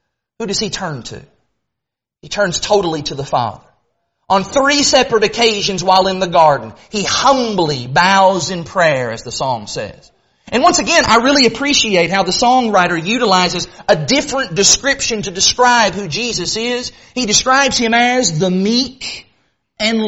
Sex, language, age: male, English, 30-49